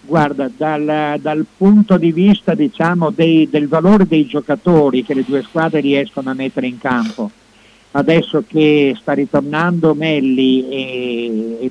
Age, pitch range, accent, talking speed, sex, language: 50-69, 135-170 Hz, native, 145 wpm, male, Italian